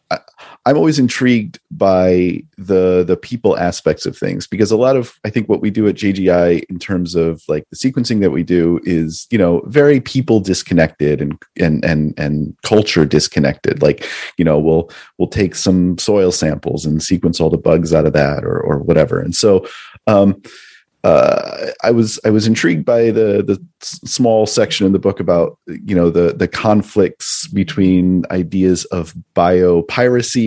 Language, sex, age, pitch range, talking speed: English, male, 30-49, 85-115 Hz, 175 wpm